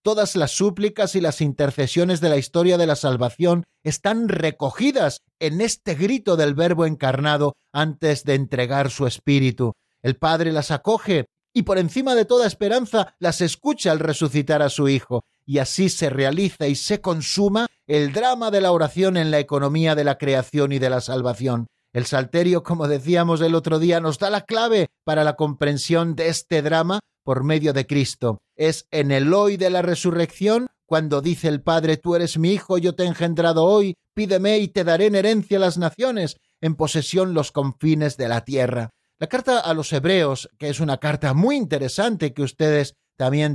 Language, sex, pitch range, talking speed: Spanish, male, 140-180 Hz, 185 wpm